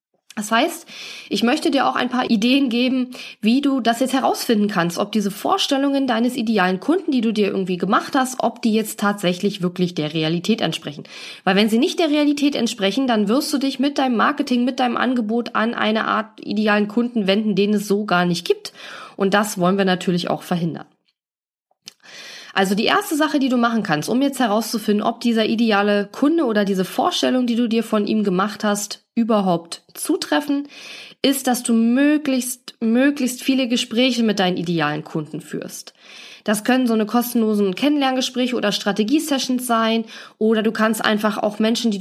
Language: German